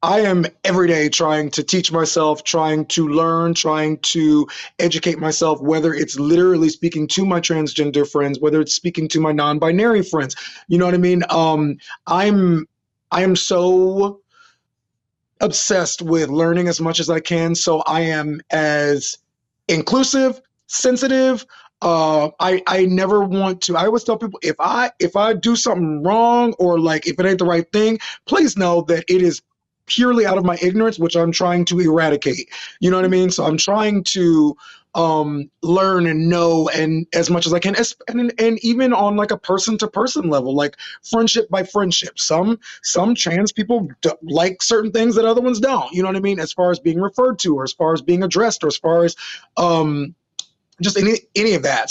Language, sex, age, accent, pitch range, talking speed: English, male, 30-49, American, 160-205 Hz, 190 wpm